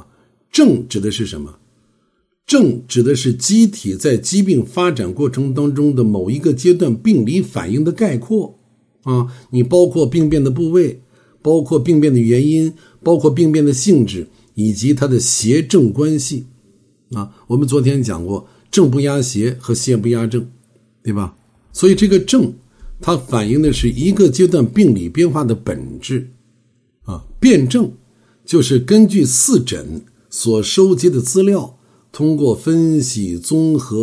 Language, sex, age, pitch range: Chinese, male, 60-79, 120-170 Hz